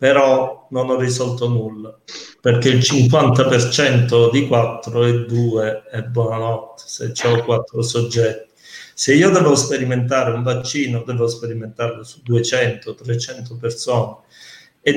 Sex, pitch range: male, 115-155 Hz